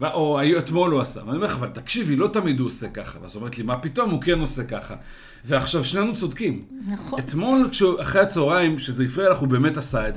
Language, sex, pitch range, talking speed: Hebrew, male, 125-170 Hz, 225 wpm